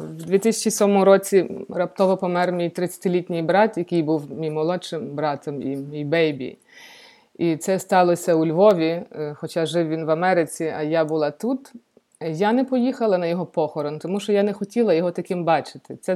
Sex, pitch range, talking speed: female, 165-205 Hz, 165 wpm